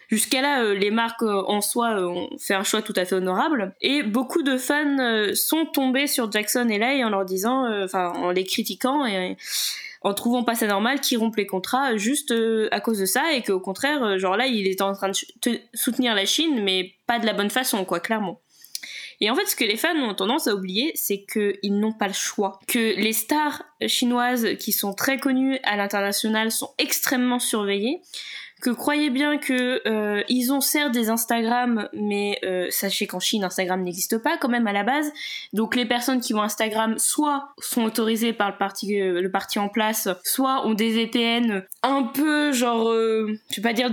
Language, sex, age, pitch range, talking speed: French, female, 20-39, 200-255 Hz, 215 wpm